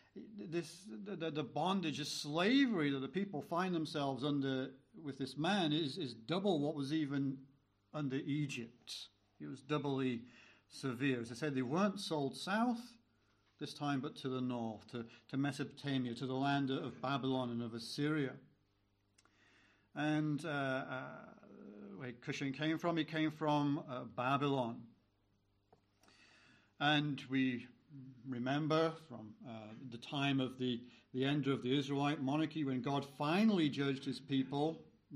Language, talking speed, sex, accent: English, 145 wpm, male, British